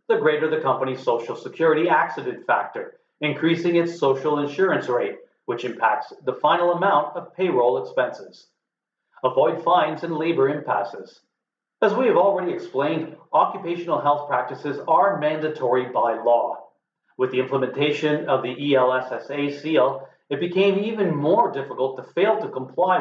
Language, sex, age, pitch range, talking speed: English, male, 40-59, 135-185 Hz, 140 wpm